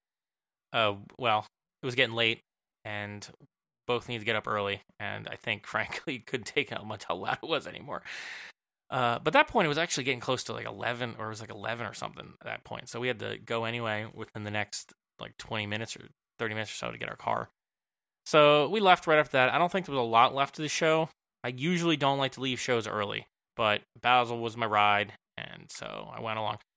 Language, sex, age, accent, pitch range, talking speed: English, male, 20-39, American, 110-145 Hz, 235 wpm